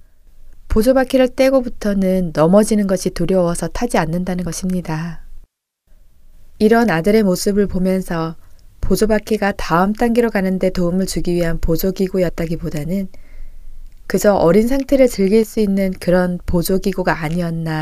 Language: Korean